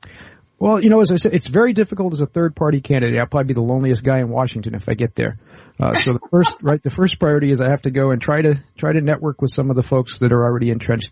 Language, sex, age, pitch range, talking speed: English, male, 50-69, 120-145 Hz, 290 wpm